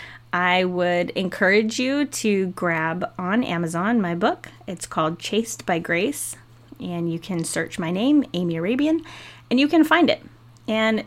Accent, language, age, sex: American, English, 20-39, female